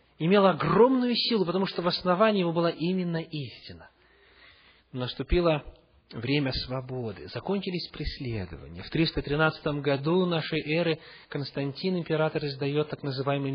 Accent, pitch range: native, 135-220 Hz